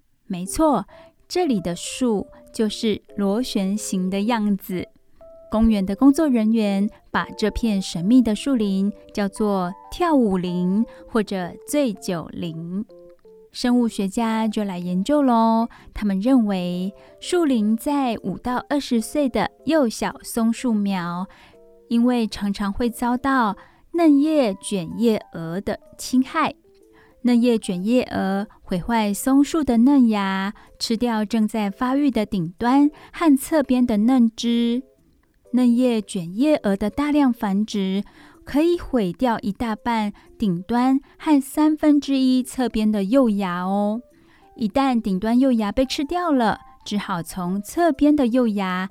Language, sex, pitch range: Chinese, female, 200-265 Hz